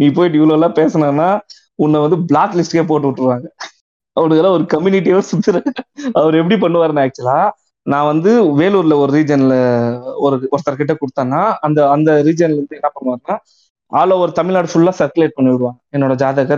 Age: 20-39